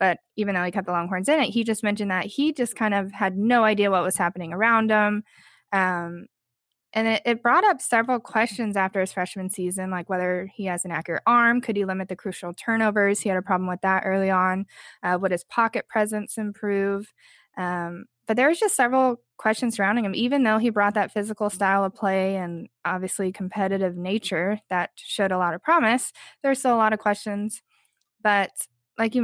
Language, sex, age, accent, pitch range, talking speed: English, female, 10-29, American, 185-220 Hz, 205 wpm